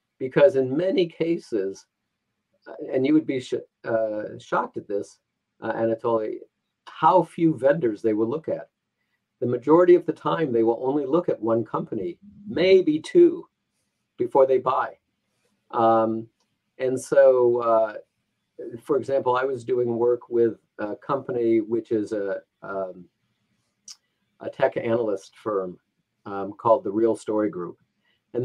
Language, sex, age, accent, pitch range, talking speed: English, male, 50-69, American, 110-150 Hz, 135 wpm